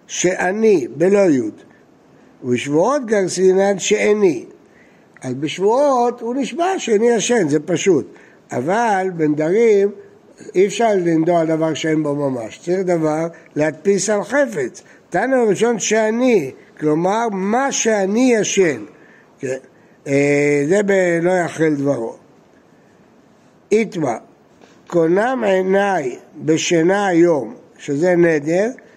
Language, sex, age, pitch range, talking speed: Hebrew, male, 60-79, 160-230 Hz, 95 wpm